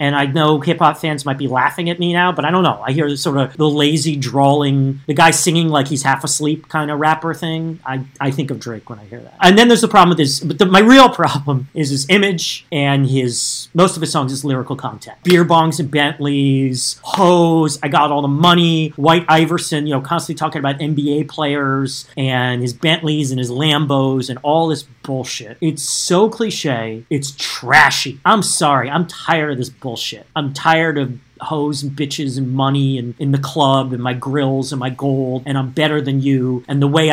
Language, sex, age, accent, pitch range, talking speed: English, male, 40-59, American, 135-160 Hz, 220 wpm